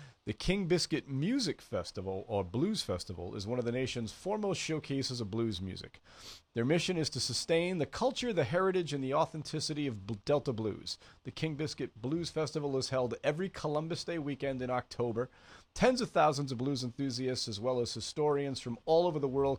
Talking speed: 185 wpm